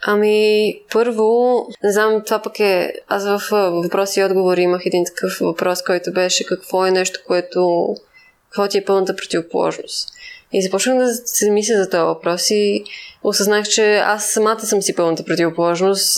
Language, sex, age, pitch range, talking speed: Bulgarian, female, 20-39, 195-240 Hz, 165 wpm